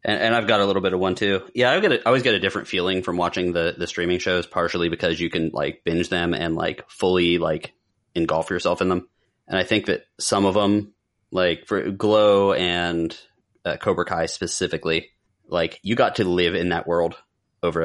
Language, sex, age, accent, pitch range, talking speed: English, male, 30-49, American, 85-95 Hz, 210 wpm